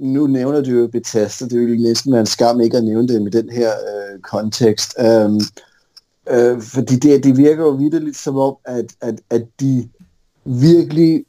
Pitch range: 115-140 Hz